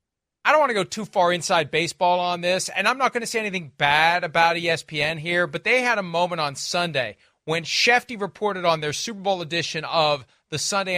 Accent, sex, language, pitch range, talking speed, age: American, male, English, 160-200 Hz, 220 wpm, 40-59